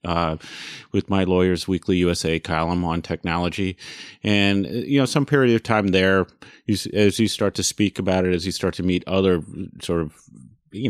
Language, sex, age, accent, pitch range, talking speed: English, male, 30-49, American, 90-110 Hz, 185 wpm